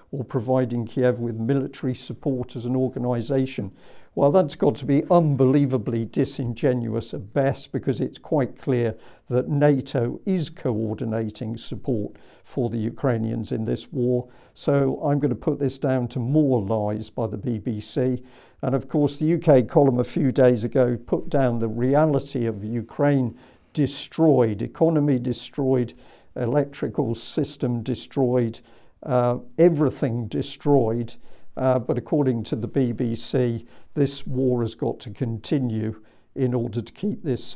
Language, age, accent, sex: English, 50-69, British, male